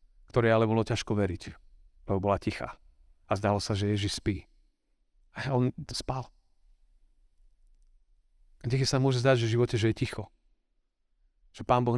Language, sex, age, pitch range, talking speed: Slovak, male, 40-59, 100-120 Hz, 155 wpm